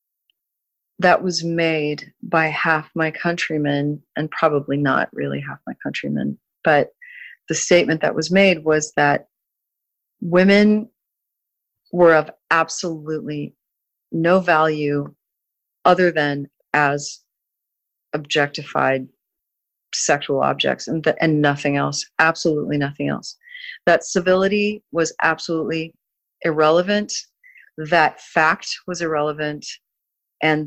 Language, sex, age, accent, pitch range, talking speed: English, female, 40-59, American, 145-170 Hz, 100 wpm